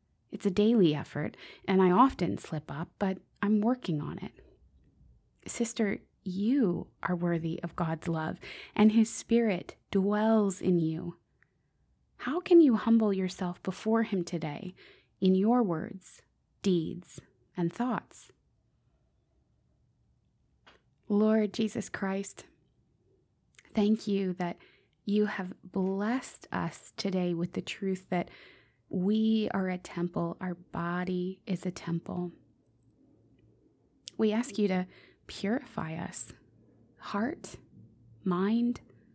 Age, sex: 20-39, female